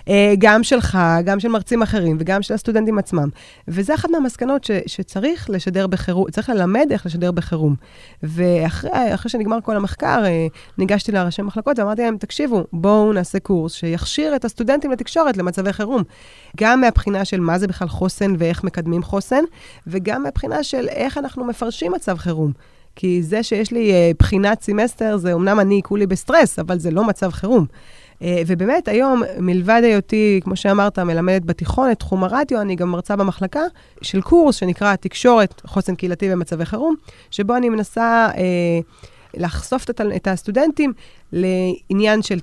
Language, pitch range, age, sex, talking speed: Hebrew, 180-235 Hz, 20-39, female, 155 wpm